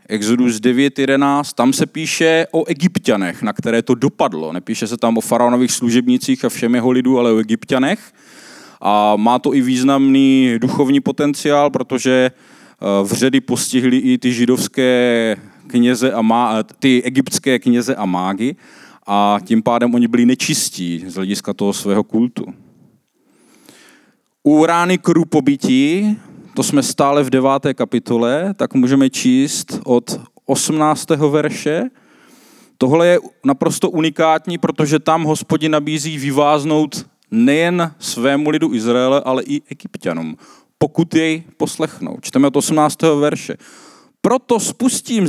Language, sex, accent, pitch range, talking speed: Czech, male, native, 125-180 Hz, 130 wpm